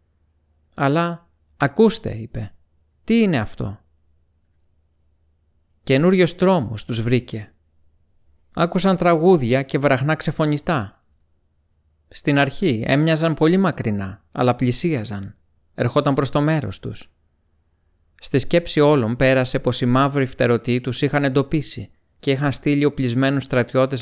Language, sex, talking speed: Greek, male, 105 wpm